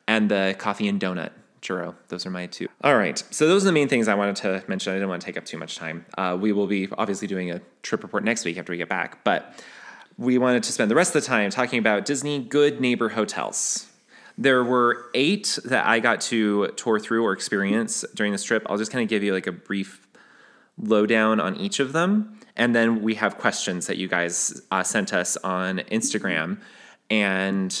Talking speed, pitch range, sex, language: 225 wpm, 100-135 Hz, male, English